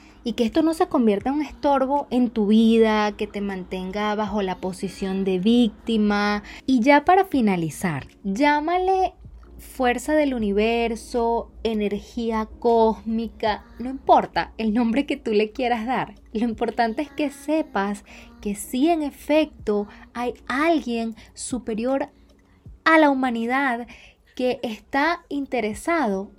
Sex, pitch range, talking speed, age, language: female, 210-280 Hz, 130 wpm, 20-39, Spanish